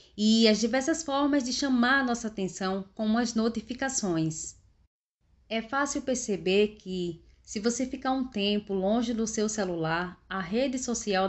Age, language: 20-39, Portuguese